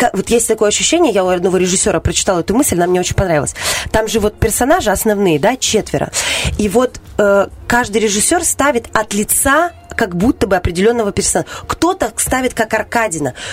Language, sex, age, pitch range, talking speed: Russian, female, 20-39, 190-245 Hz, 170 wpm